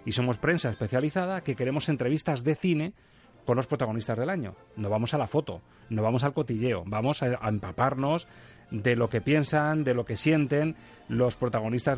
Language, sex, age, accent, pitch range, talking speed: Spanish, male, 30-49, Spanish, 125-160 Hz, 180 wpm